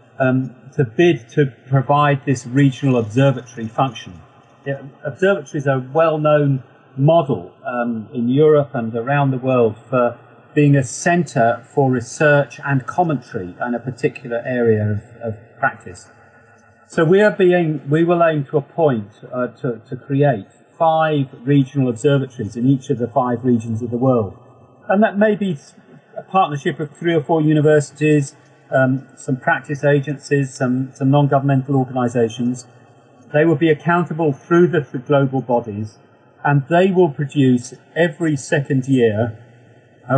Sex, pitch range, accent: male, 120-150 Hz, British